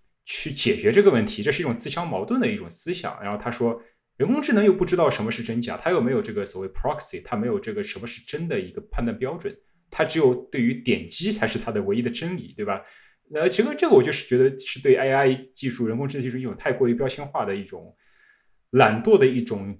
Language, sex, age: Chinese, male, 20-39